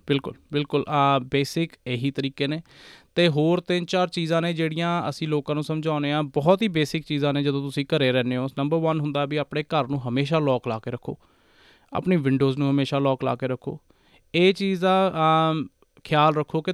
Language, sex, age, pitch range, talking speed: Punjabi, male, 20-39, 135-160 Hz, 205 wpm